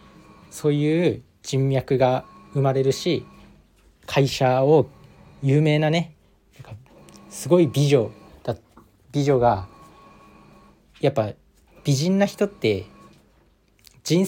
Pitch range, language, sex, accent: 115-155 Hz, Japanese, male, native